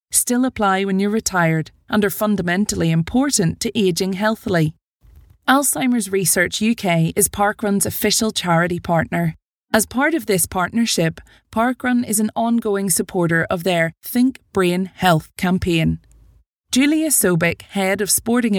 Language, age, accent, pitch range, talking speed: English, 20-39, Irish, 175-230 Hz, 130 wpm